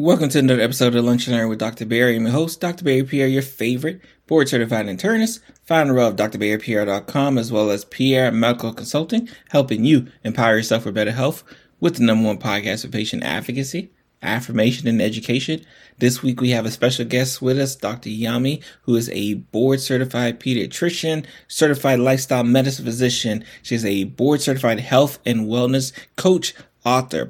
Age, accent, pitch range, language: 30-49, American, 115-135 Hz, English